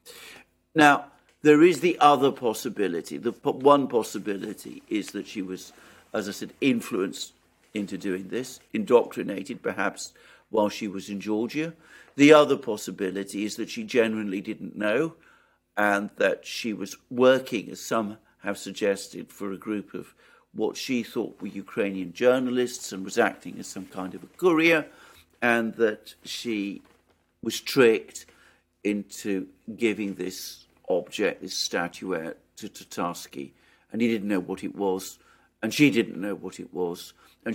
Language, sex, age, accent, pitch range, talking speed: English, male, 60-79, British, 95-130 Hz, 150 wpm